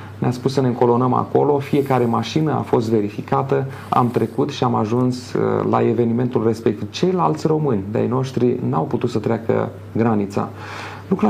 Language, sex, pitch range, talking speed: Romanian, male, 110-145 Hz, 155 wpm